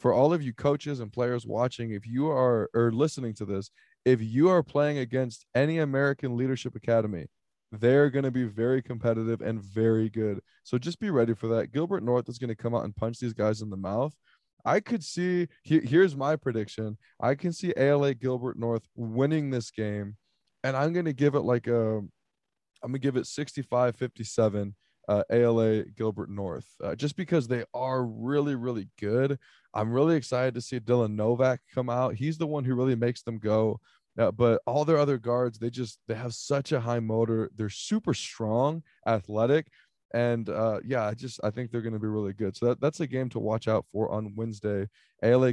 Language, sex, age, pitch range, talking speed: English, male, 20-39, 110-135 Hz, 200 wpm